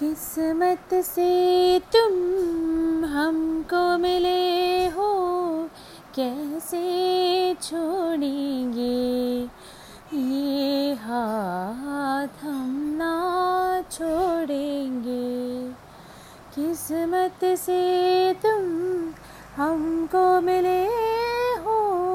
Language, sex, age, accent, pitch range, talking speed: Hindi, female, 20-39, native, 285-380 Hz, 50 wpm